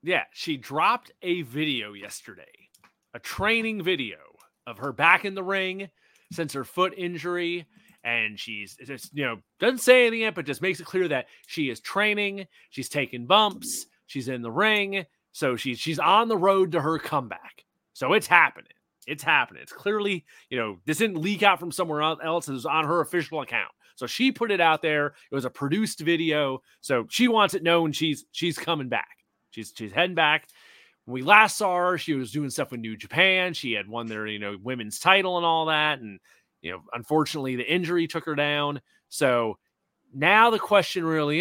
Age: 30-49